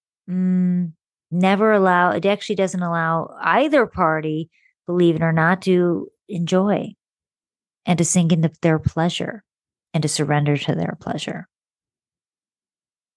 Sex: female